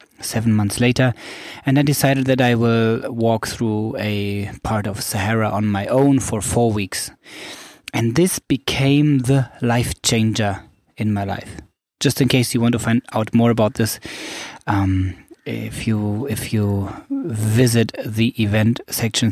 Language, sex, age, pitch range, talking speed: English, male, 20-39, 105-125 Hz, 150 wpm